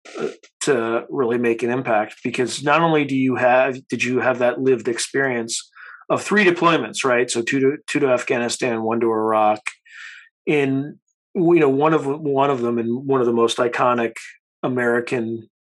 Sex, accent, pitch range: male, American, 120-150 Hz